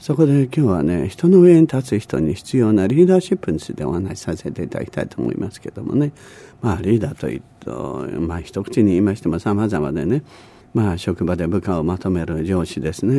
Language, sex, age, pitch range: Japanese, male, 50-69, 85-130 Hz